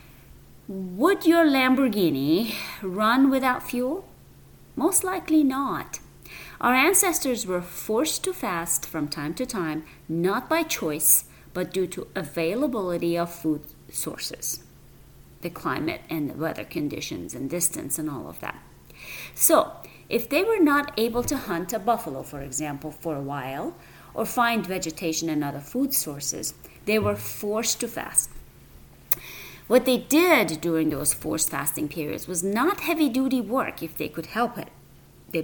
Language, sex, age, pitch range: English, female, 30-49, 155-255 Hz